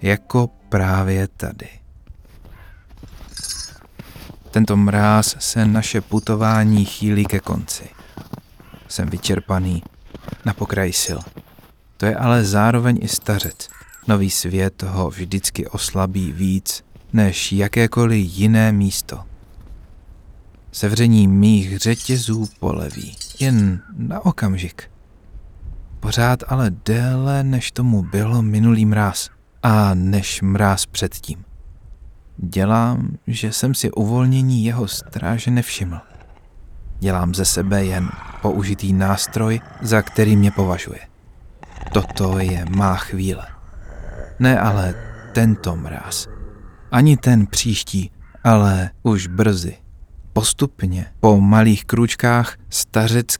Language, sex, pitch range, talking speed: Czech, male, 95-110 Hz, 100 wpm